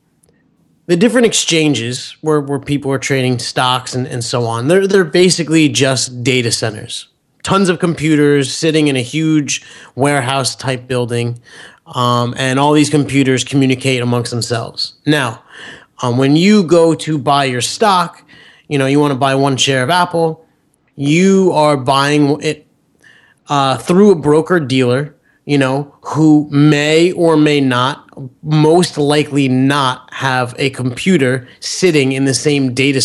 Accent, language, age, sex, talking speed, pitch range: American, English, 30-49, male, 145 wpm, 130-155 Hz